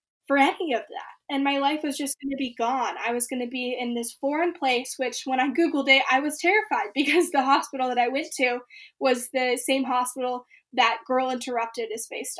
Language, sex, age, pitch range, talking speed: English, female, 10-29, 245-280 Hz, 225 wpm